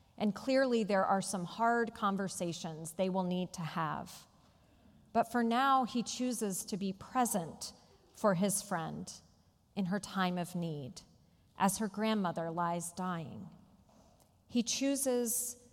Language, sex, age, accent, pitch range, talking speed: English, female, 40-59, American, 180-235 Hz, 135 wpm